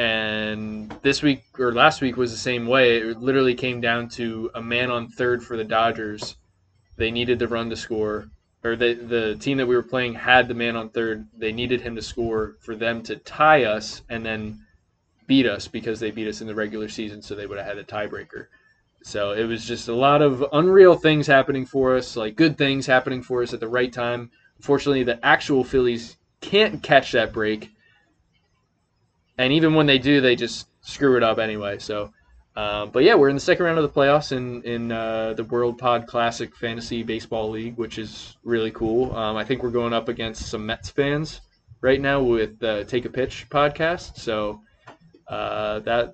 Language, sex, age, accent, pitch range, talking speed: English, male, 20-39, American, 110-125 Hz, 210 wpm